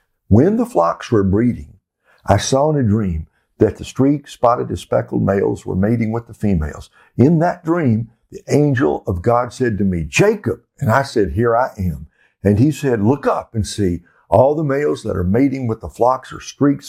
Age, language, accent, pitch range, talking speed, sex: 60-79, English, American, 100-130 Hz, 205 wpm, male